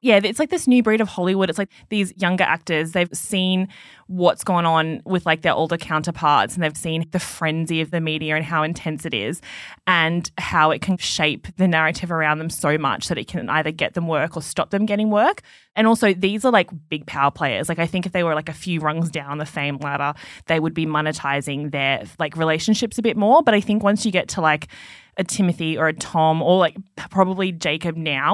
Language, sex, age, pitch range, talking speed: English, female, 20-39, 155-190 Hz, 230 wpm